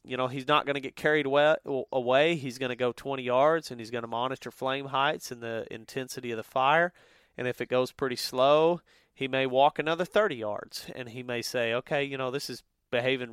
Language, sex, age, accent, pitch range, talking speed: English, male, 30-49, American, 125-150 Hz, 225 wpm